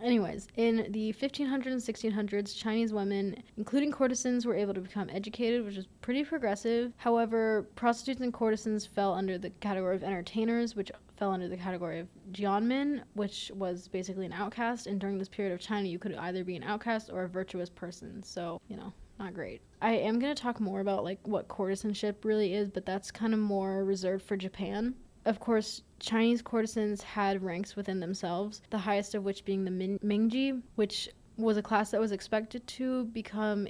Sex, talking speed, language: female, 190 wpm, English